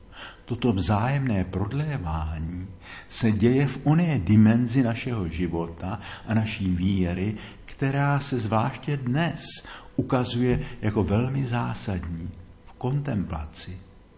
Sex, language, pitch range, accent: male, Czech, 90-115 Hz, native